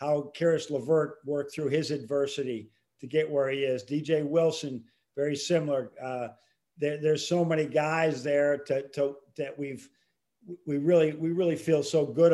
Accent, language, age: American, English, 50-69